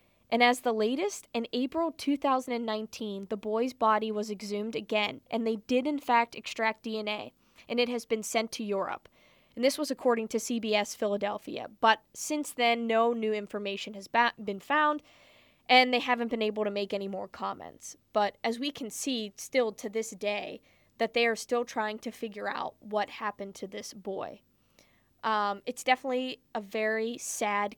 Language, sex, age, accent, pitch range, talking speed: English, female, 20-39, American, 215-250 Hz, 175 wpm